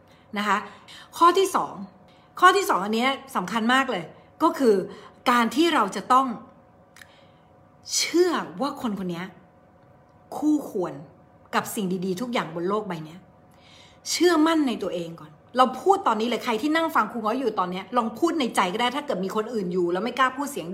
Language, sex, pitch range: Thai, female, 205-290 Hz